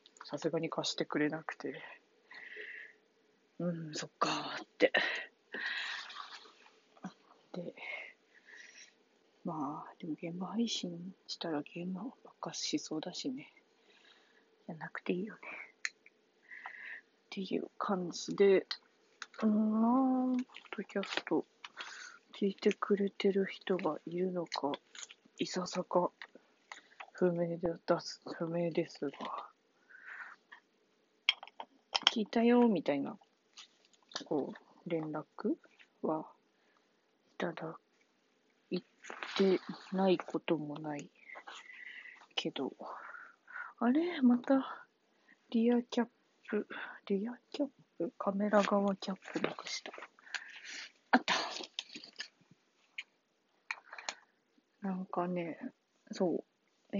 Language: Japanese